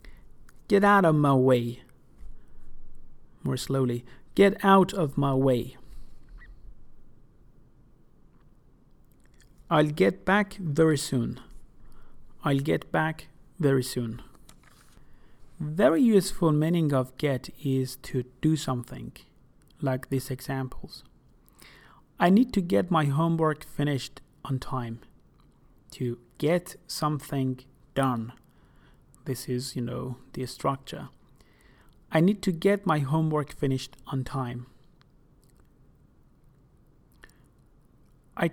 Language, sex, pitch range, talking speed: English, male, 130-160 Hz, 100 wpm